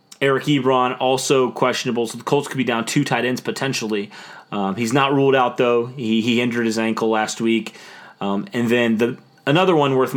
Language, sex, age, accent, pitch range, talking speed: English, male, 30-49, American, 110-130 Hz, 200 wpm